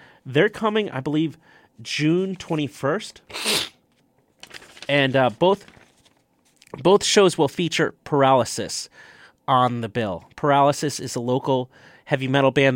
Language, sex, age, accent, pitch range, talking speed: English, male, 30-49, American, 120-155 Hz, 115 wpm